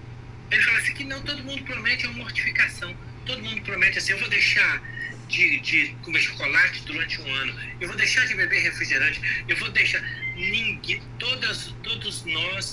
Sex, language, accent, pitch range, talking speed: male, Portuguese, Brazilian, 120-125 Hz, 170 wpm